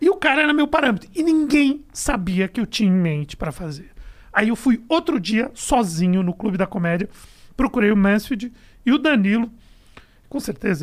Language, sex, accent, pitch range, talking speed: Portuguese, male, Brazilian, 180-255 Hz, 190 wpm